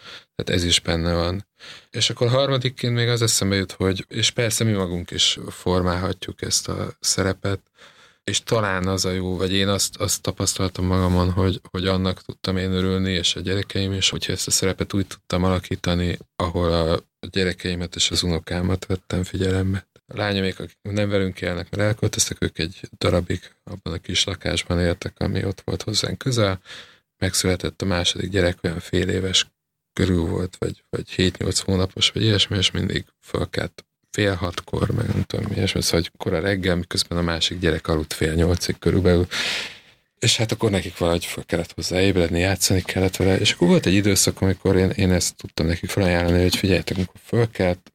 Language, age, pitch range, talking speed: Hungarian, 20-39, 90-100 Hz, 180 wpm